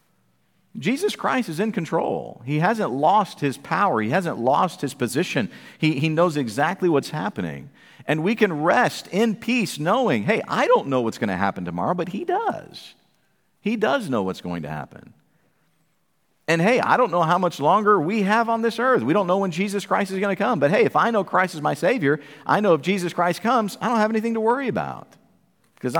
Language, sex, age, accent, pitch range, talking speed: English, male, 50-69, American, 150-215 Hz, 215 wpm